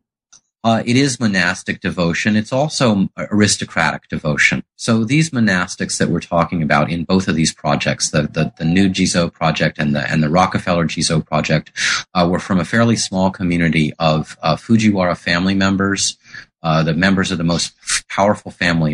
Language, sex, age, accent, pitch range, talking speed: English, male, 30-49, American, 80-105 Hz, 170 wpm